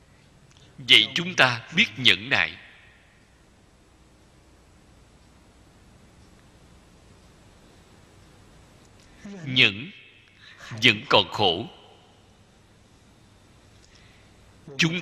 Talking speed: 45 wpm